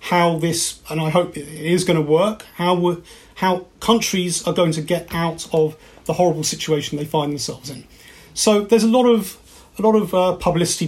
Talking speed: 200 wpm